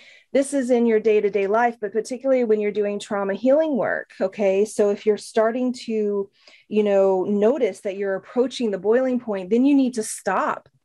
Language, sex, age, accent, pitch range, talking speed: English, female, 30-49, American, 190-225 Hz, 190 wpm